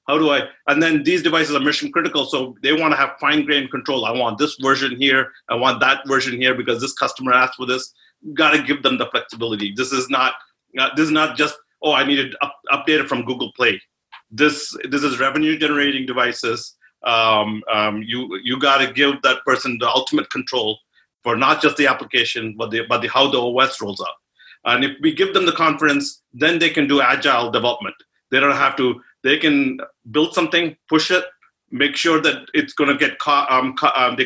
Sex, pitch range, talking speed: male, 125-155 Hz, 215 wpm